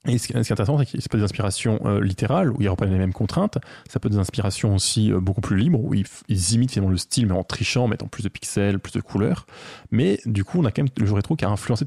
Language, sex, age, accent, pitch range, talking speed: French, male, 20-39, French, 100-125 Hz, 300 wpm